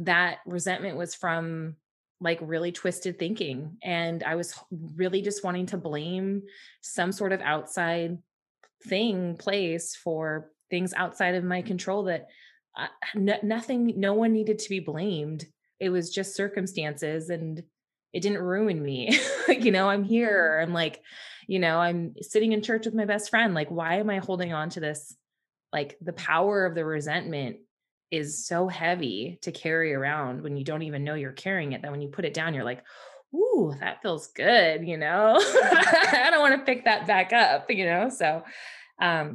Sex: female